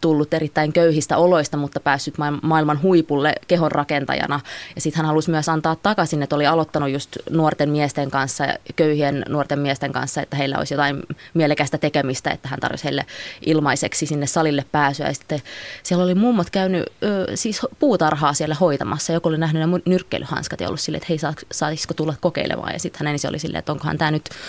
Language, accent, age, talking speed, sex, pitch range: Finnish, native, 20-39, 180 wpm, female, 150-175 Hz